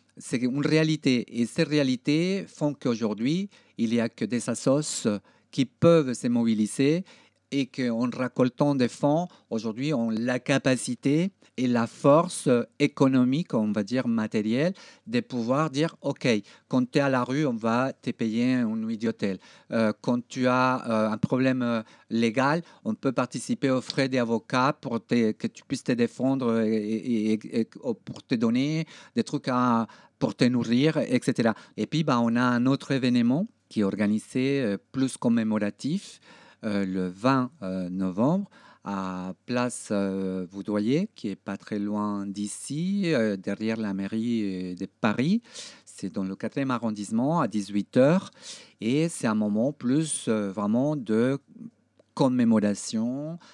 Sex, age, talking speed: male, 50-69, 145 wpm